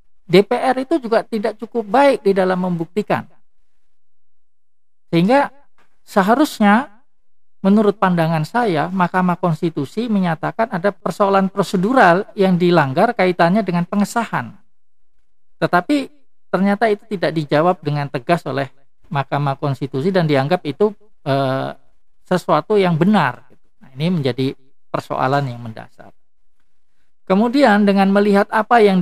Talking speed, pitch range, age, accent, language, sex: 110 wpm, 135-205 Hz, 50-69, native, Indonesian, male